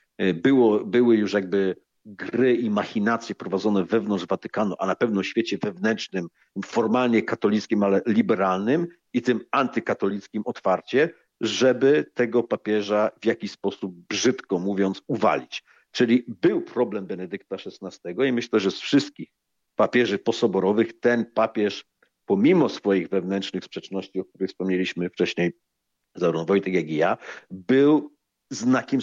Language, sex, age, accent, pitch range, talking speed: Polish, male, 50-69, native, 100-125 Hz, 130 wpm